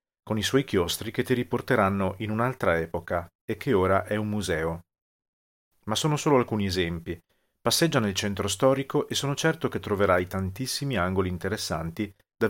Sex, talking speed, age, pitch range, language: male, 165 wpm, 40-59, 95-125 Hz, Italian